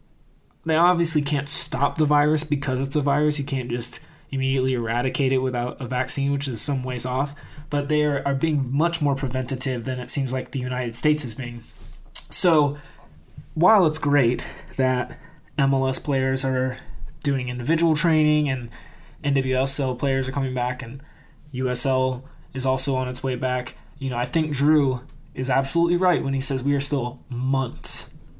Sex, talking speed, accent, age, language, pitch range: male, 170 wpm, American, 20-39, English, 130-150 Hz